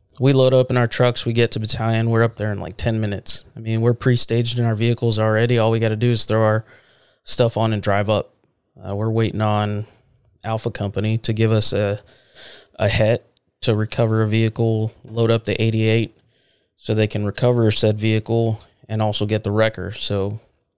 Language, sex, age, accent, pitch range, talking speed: English, male, 20-39, American, 105-115 Hz, 200 wpm